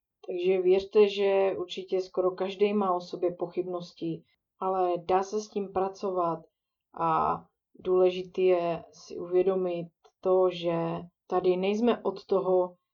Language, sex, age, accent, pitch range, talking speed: Czech, female, 20-39, native, 175-195 Hz, 125 wpm